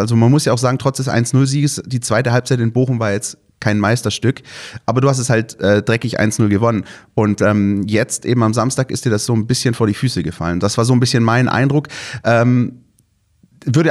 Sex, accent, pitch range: male, German, 105-130 Hz